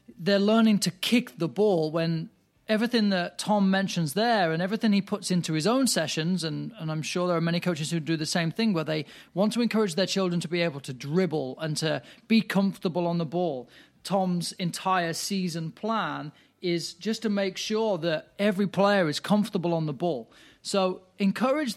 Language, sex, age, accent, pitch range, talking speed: English, male, 30-49, British, 155-190 Hz, 195 wpm